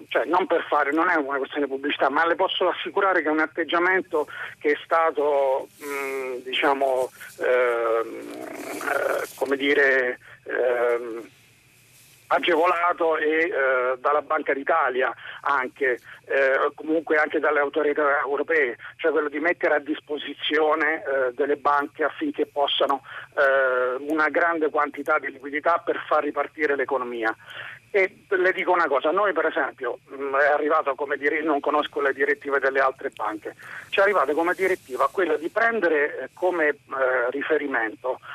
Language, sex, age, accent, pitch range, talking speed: Italian, male, 50-69, native, 135-170 Hz, 140 wpm